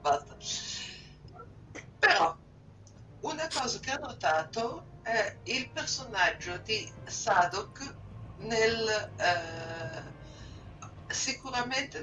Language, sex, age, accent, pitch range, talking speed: Italian, female, 60-79, native, 150-235 Hz, 75 wpm